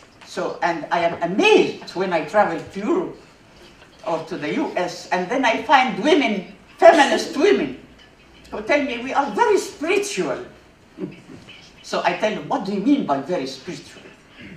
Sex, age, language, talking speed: female, 60-79, German, 160 wpm